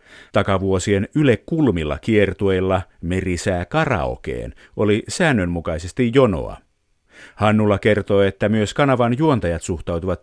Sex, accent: male, native